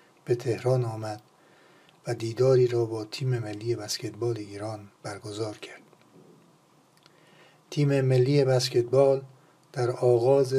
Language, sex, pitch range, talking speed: Persian, male, 115-130 Hz, 100 wpm